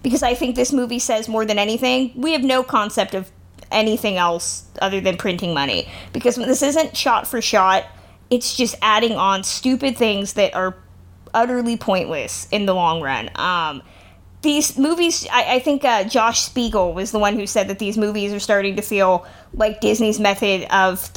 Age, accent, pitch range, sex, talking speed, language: 20-39, American, 190-250 Hz, female, 185 wpm, English